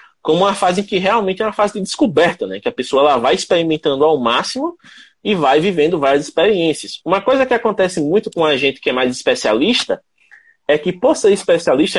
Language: Portuguese